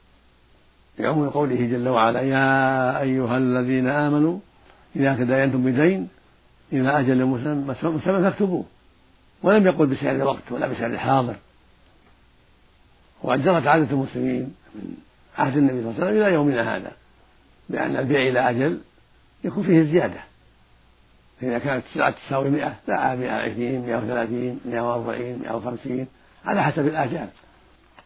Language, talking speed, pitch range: Arabic, 125 wpm, 115-145 Hz